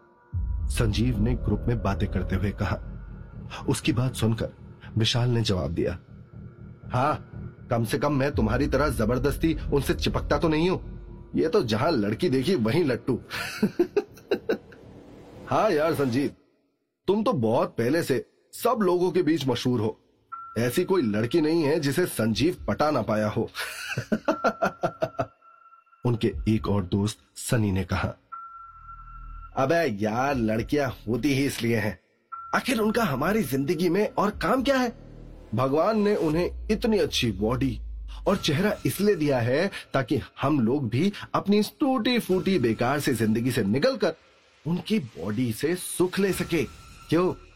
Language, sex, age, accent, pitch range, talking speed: Hindi, male, 30-49, native, 110-175 Hz, 140 wpm